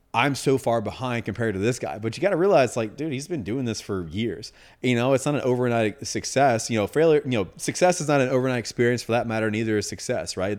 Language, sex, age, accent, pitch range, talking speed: English, male, 30-49, American, 110-130 Hz, 260 wpm